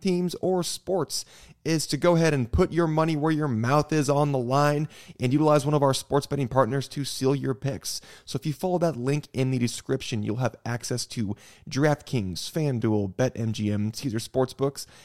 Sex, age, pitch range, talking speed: male, 20-39, 115-150 Hz, 190 wpm